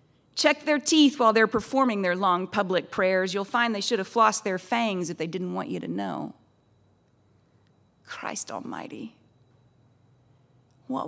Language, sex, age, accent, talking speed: English, female, 40-59, American, 150 wpm